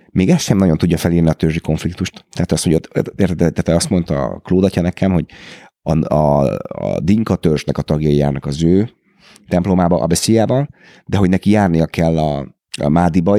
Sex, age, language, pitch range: male, 30-49, Hungarian, 80-95 Hz